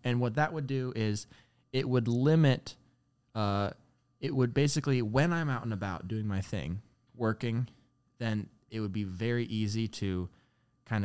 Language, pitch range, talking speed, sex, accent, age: English, 105-130 Hz, 165 wpm, male, American, 20-39